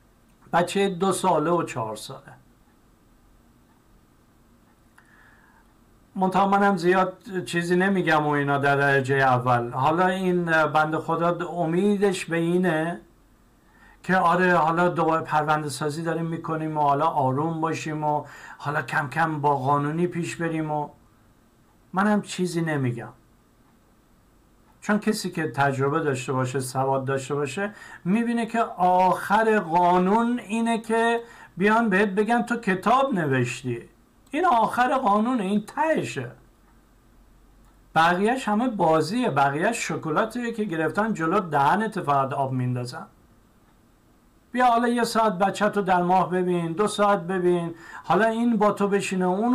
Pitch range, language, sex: 150-210 Hz, Persian, male